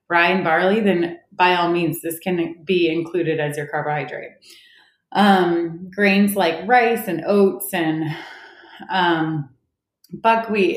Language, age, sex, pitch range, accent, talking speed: English, 20-39, female, 165-195 Hz, American, 130 wpm